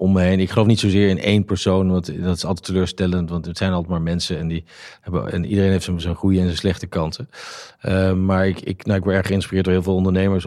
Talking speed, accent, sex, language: 270 wpm, Dutch, male, Dutch